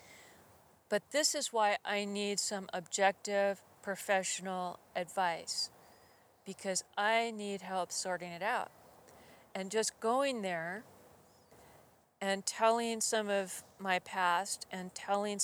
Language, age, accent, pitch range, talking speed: English, 40-59, American, 185-215 Hz, 115 wpm